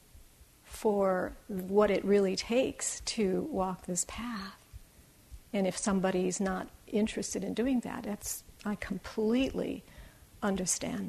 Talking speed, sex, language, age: 115 wpm, female, English, 50-69